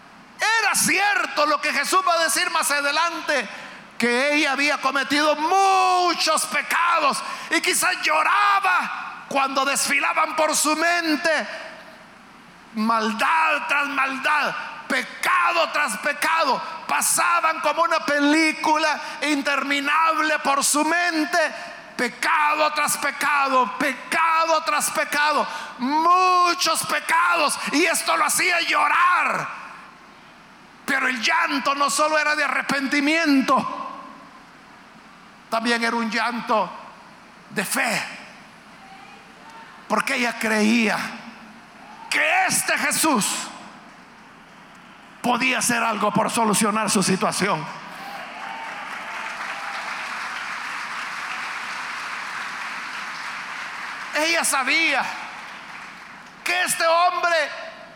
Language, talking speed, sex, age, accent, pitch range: Spanish, 85 wpm, male, 50-69, Mexican, 255-325 Hz